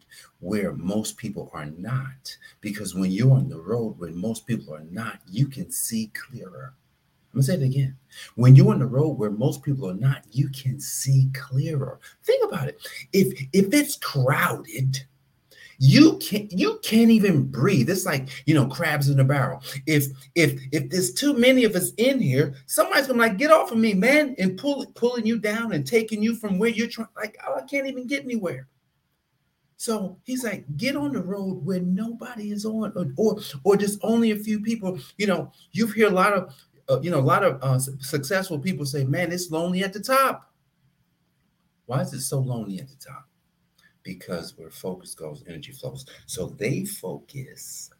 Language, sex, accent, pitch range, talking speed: English, male, American, 135-215 Hz, 195 wpm